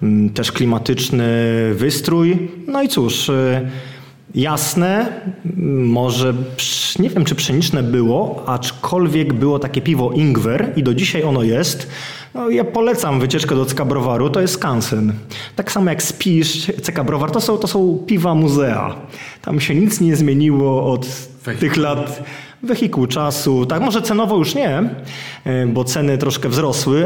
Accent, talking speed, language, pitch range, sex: native, 140 wpm, Polish, 130-170 Hz, male